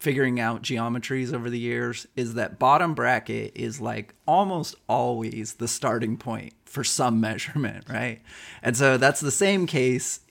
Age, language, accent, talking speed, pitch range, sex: 30-49, English, American, 155 wpm, 115-135 Hz, male